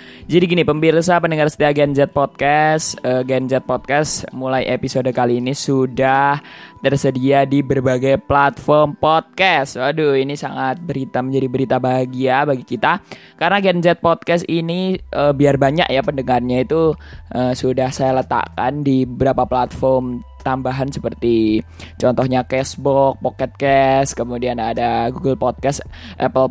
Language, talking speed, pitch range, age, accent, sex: Indonesian, 135 wpm, 125-150 Hz, 20-39, native, male